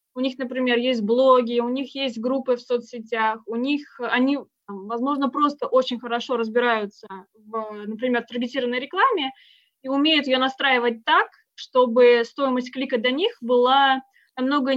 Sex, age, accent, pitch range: female, 20-39, native, 230-270 Hz